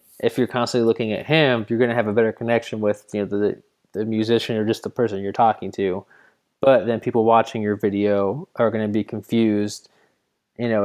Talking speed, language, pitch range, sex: 215 wpm, English, 105-120 Hz, male